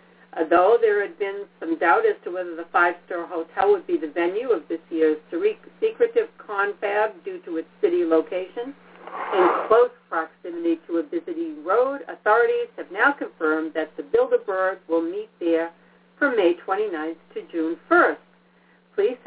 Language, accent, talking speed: English, American, 155 wpm